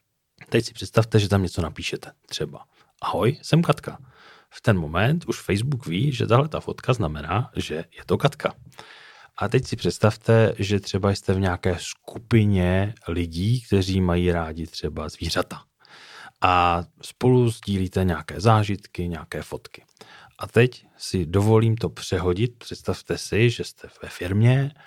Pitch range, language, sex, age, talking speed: 90-115 Hz, Czech, male, 40-59, 145 wpm